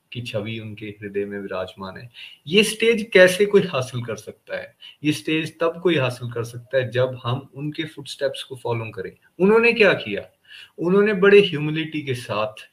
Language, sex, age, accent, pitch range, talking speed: Hindi, male, 30-49, native, 120-175 Hz, 110 wpm